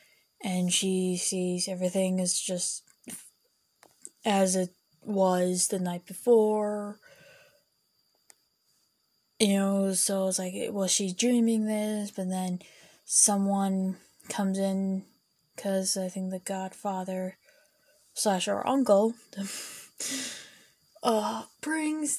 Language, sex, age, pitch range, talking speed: English, female, 10-29, 185-215 Hz, 95 wpm